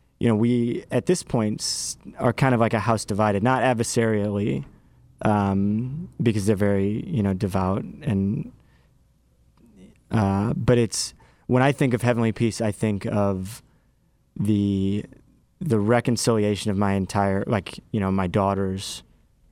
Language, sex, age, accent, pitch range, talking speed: English, male, 30-49, American, 100-115 Hz, 140 wpm